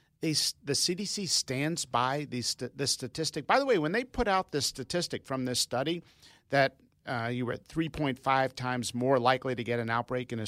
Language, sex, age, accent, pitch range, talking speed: English, male, 50-69, American, 125-160 Hz, 200 wpm